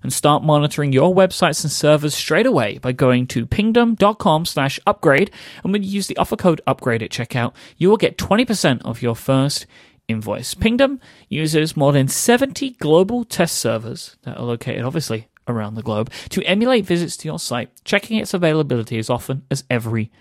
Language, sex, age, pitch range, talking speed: English, male, 30-49, 125-180 Hz, 180 wpm